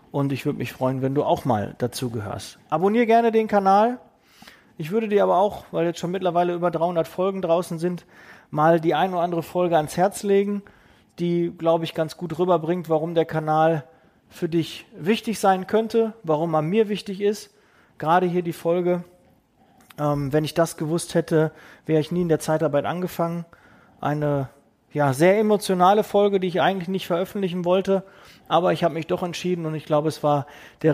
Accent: German